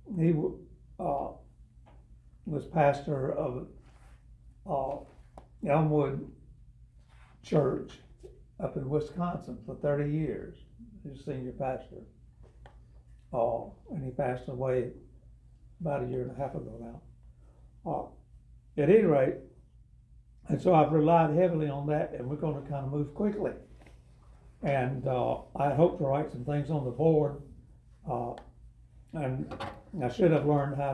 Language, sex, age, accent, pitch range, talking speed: English, male, 60-79, American, 125-155 Hz, 130 wpm